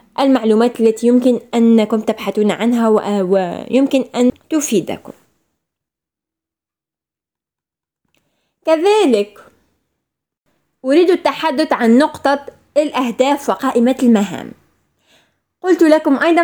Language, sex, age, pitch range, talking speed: Arabic, female, 20-39, 215-260 Hz, 75 wpm